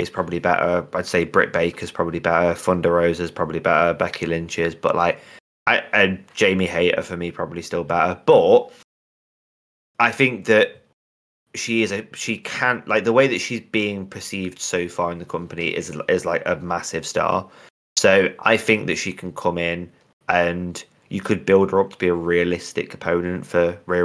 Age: 20-39